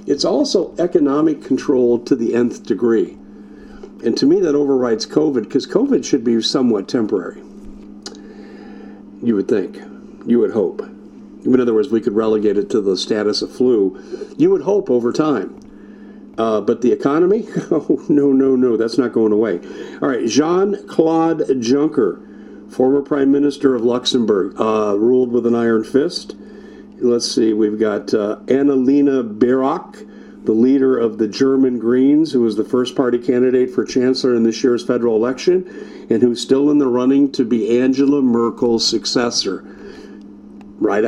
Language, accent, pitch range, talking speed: English, American, 120-150 Hz, 160 wpm